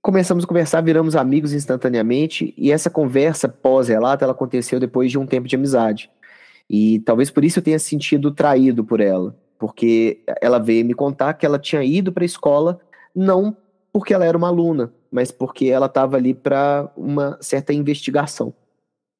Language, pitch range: Portuguese, 120-150 Hz